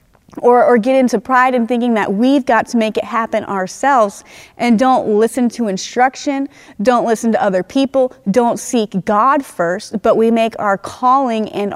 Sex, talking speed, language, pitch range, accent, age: female, 185 wpm, English, 220-260 Hz, American, 30-49